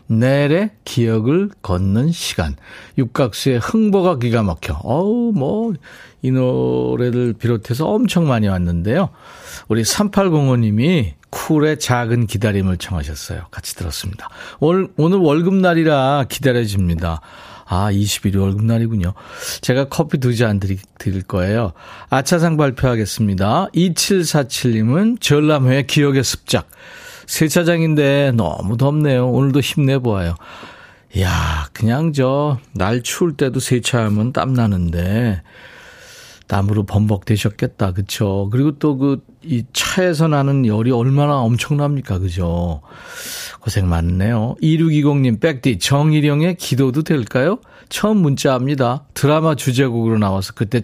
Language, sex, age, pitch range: Korean, male, 40-59, 100-145 Hz